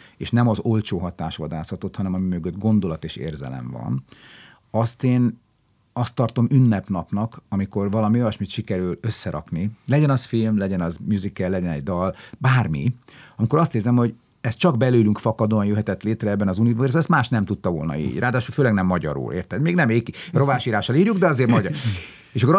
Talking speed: 175 wpm